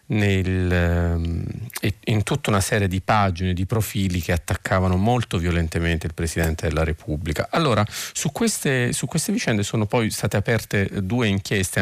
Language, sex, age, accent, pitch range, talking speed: Italian, male, 40-59, native, 95-115 Hz, 145 wpm